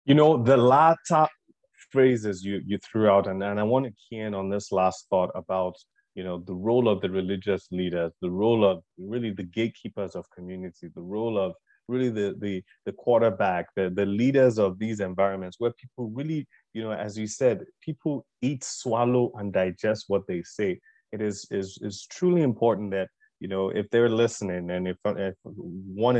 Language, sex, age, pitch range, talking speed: English, male, 30-49, 95-120 Hz, 190 wpm